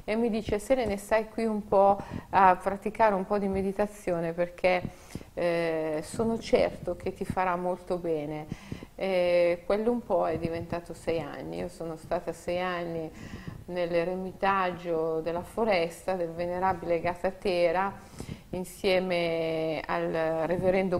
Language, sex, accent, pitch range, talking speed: Italian, female, native, 165-185 Hz, 135 wpm